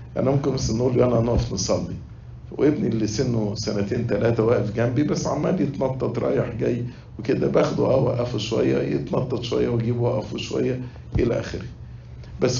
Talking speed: 155 wpm